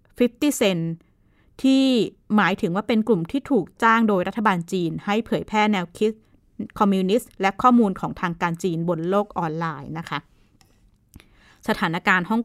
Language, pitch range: Thai, 165-215 Hz